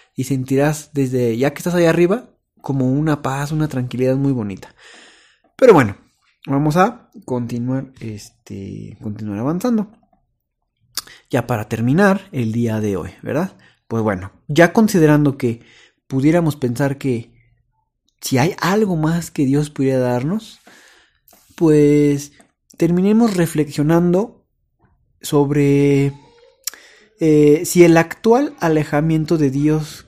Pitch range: 125-170 Hz